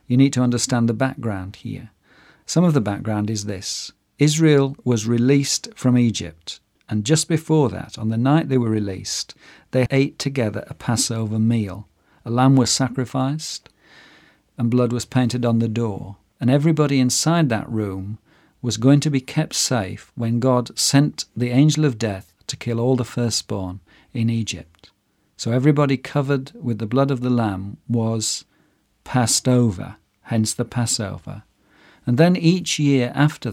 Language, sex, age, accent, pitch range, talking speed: English, male, 50-69, British, 110-140 Hz, 160 wpm